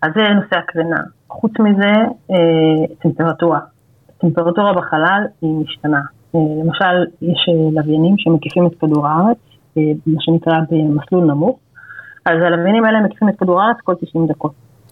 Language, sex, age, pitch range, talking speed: Hebrew, female, 30-49, 155-185 Hz, 130 wpm